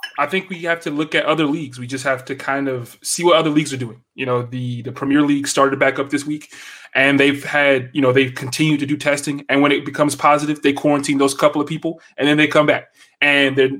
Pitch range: 130-155 Hz